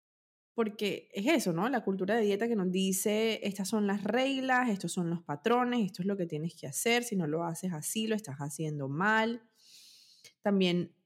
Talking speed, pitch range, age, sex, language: 195 wpm, 165-215 Hz, 20-39, female, Spanish